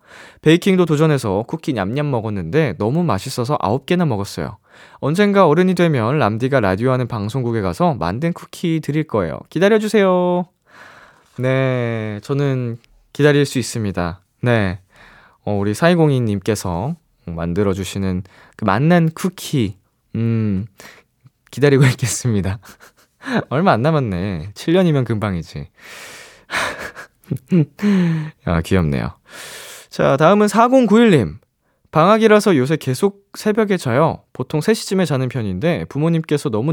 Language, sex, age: Korean, male, 20-39